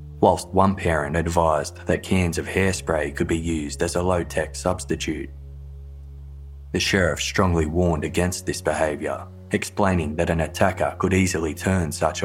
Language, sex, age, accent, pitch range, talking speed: English, male, 20-39, Australian, 85-95 Hz, 145 wpm